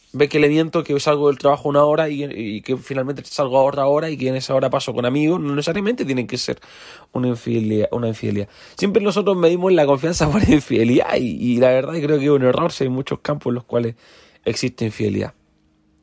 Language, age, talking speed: Spanish, 30-49, 230 wpm